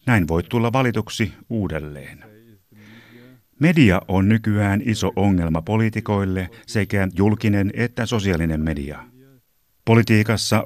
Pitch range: 90-115 Hz